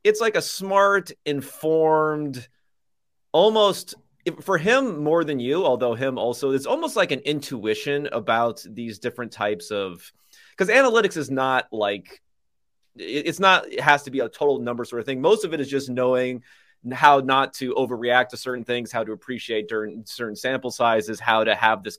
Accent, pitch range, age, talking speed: American, 120-160 Hz, 30-49, 175 wpm